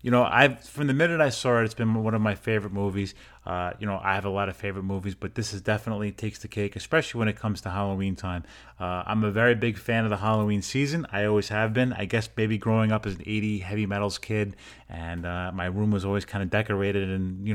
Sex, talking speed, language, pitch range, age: male, 260 wpm, English, 100-115 Hz, 30-49